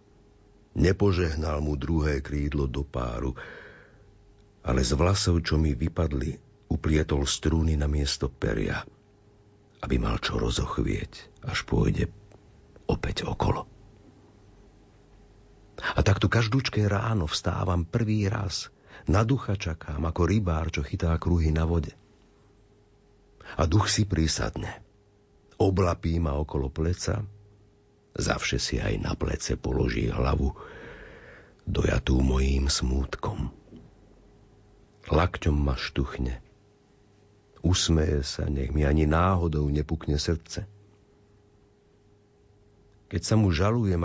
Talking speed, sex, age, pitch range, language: 100 wpm, male, 50-69, 75-105 Hz, Slovak